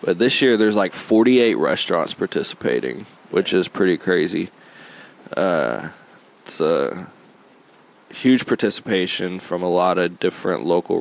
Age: 20-39